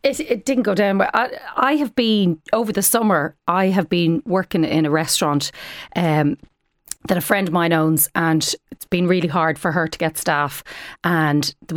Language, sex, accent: English, female, Irish